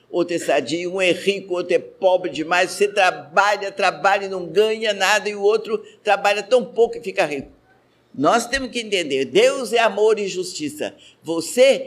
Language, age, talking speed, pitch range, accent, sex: Portuguese, 60-79, 180 wpm, 160-225 Hz, Brazilian, male